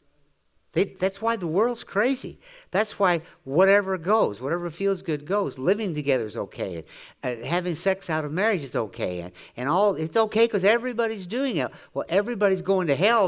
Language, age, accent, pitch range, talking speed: English, 60-79, American, 155-240 Hz, 185 wpm